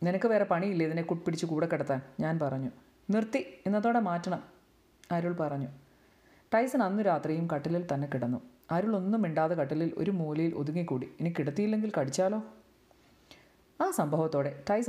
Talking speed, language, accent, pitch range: 135 wpm, Malayalam, native, 150-195 Hz